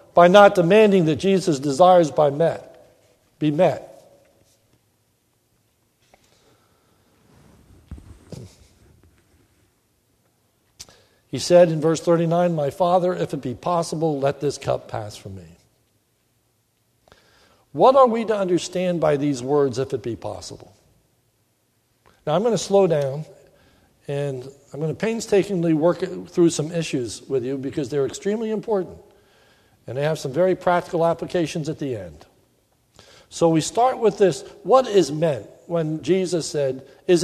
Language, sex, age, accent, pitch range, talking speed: English, male, 60-79, American, 135-185 Hz, 130 wpm